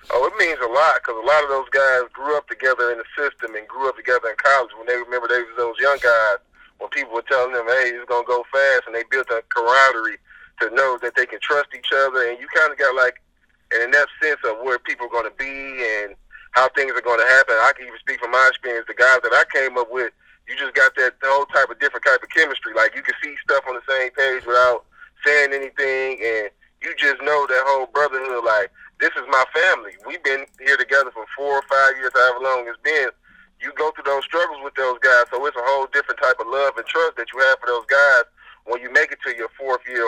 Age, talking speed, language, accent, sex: 30-49, 260 wpm, English, American, male